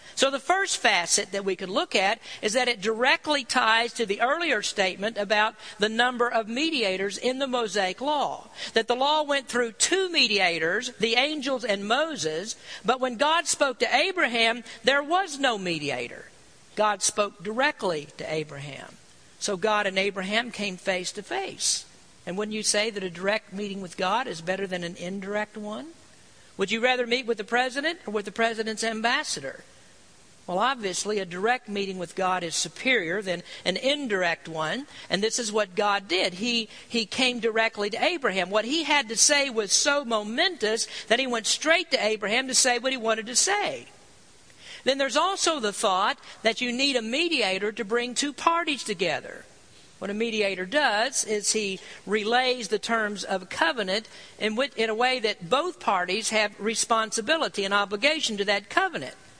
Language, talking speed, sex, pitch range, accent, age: English, 175 wpm, female, 200-255 Hz, American, 50-69